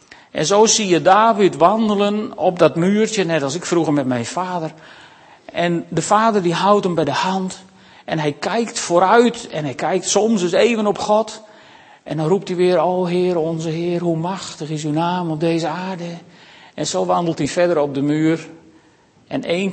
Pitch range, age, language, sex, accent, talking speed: 150-190 Hz, 50-69, Dutch, male, Dutch, 195 wpm